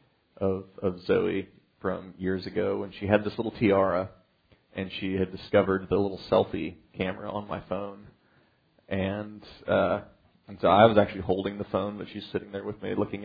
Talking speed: 180 wpm